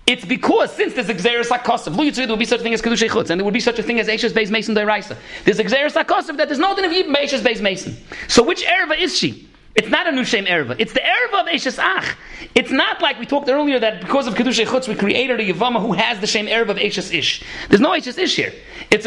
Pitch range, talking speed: 210-280 Hz, 265 wpm